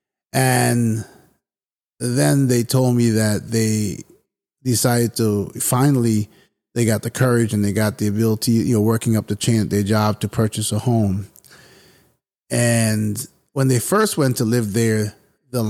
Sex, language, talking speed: male, English, 155 wpm